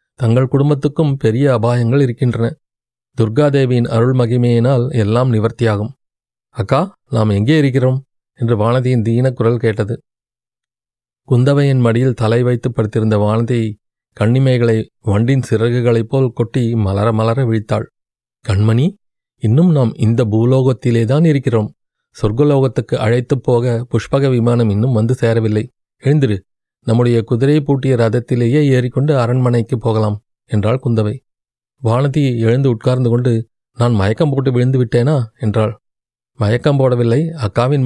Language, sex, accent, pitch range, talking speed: Tamil, male, native, 115-135 Hz, 110 wpm